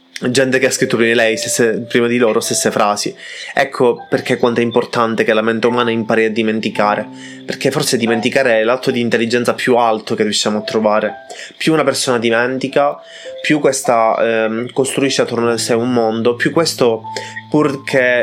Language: Italian